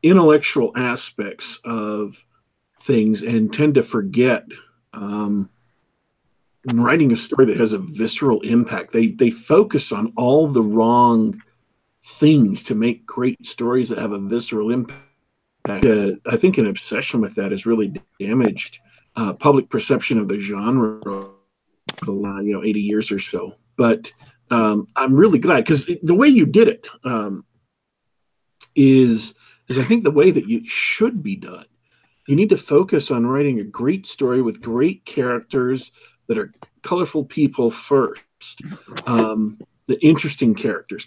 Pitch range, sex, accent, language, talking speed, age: 115-165 Hz, male, American, English, 150 wpm, 40-59